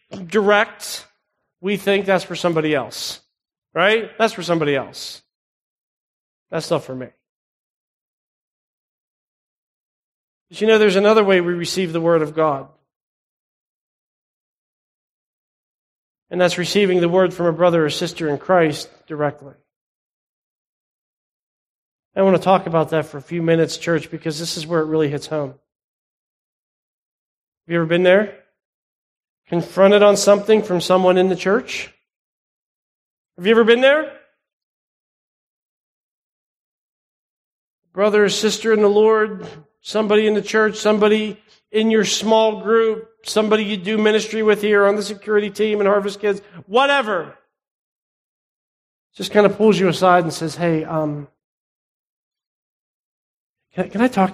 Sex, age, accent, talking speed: male, 40-59, American, 135 wpm